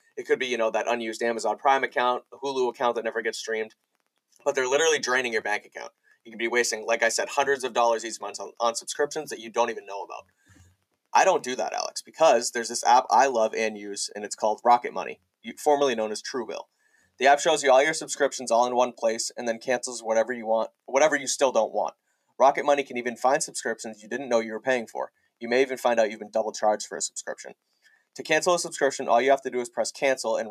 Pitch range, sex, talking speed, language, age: 110-135 Hz, male, 250 wpm, English, 30-49